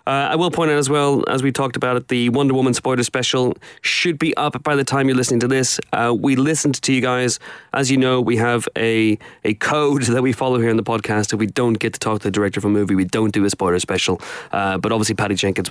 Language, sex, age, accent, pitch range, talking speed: English, male, 30-49, British, 100-140 Hz, 270 wpm